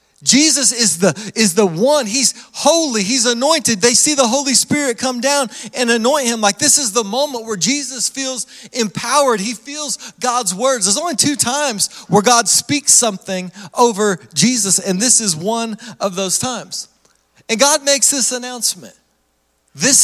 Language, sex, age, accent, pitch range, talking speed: English, male, 40-59, American, 210-255 Hz, 170 wpm